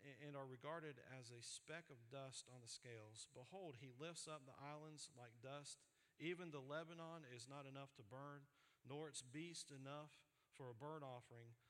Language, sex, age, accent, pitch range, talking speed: English, male, 40-59, American, 125-155 Hz, 180 wpm